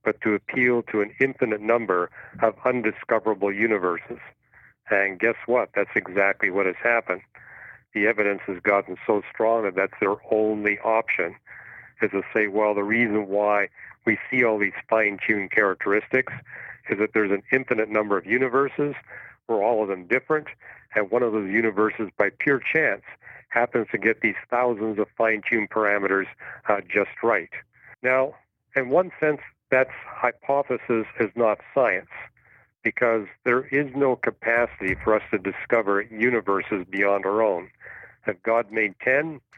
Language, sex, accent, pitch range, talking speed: English, male, American, 105-125 Hz, 150 wpm